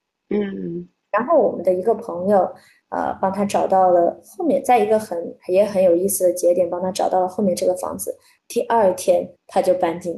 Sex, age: female, 20-39